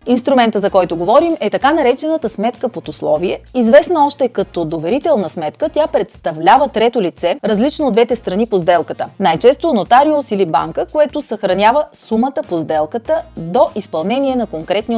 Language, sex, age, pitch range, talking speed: Bulgarian, female, 30-49, 175-250 Hz, 150 wpm